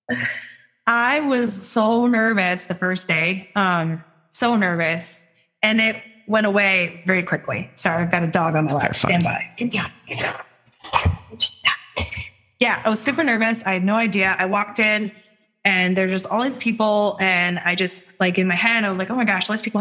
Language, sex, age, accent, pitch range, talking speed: English, female, 20-39, American, 180-225 Hz, 185 wpm